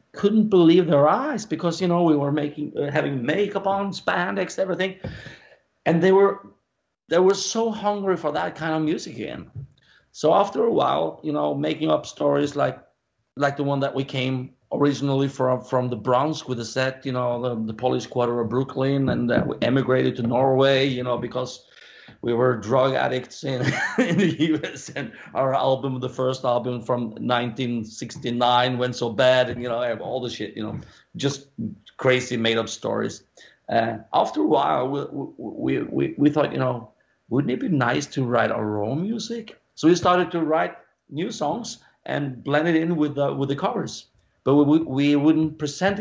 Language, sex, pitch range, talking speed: English, male, 125-155 Hz, 190 wpm